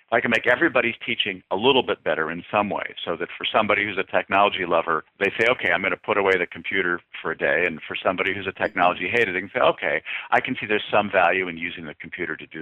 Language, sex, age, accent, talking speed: English, male, 50-69, American, 265 wpm